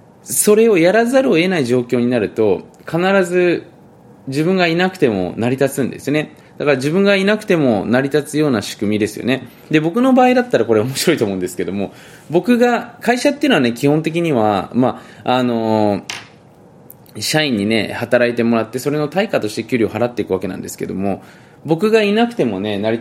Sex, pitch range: male, 115-190 Hz